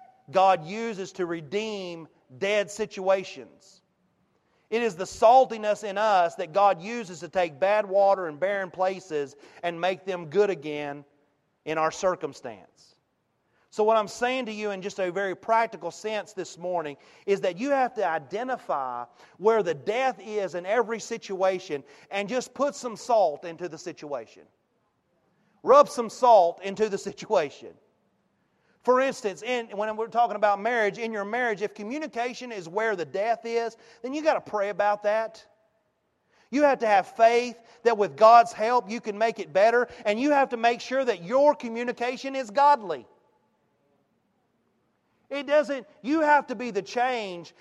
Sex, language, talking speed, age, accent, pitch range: male, English, 165 wpm, 40-59, American, 190-240 Hz